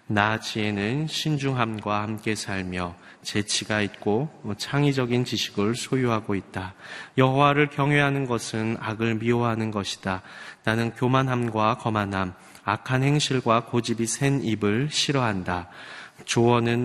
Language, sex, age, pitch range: Korean, male, 30-49, 100-125 Hz